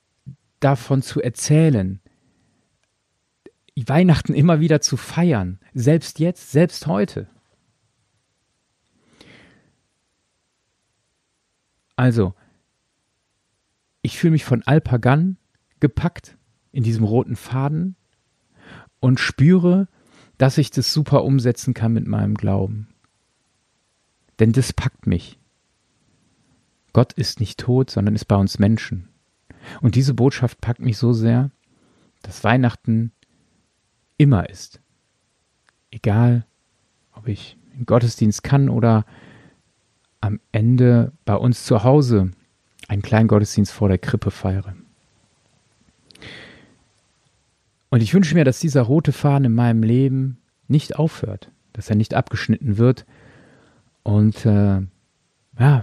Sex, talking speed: male, 105 wpm